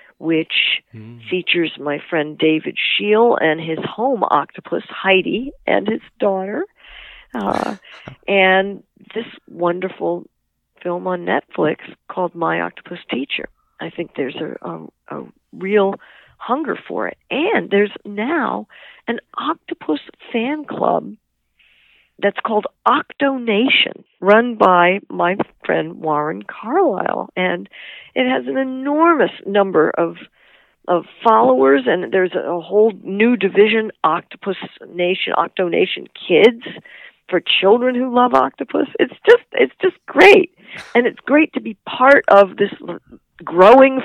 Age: 50-69